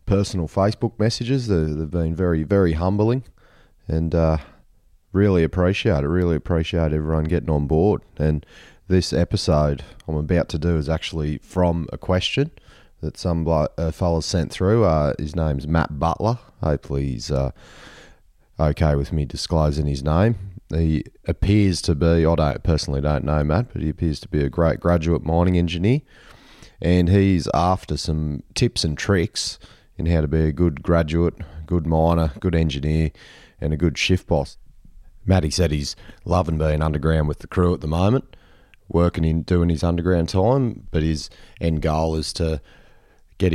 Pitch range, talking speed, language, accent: 80-95 Hz, 165 wpm, English, Australian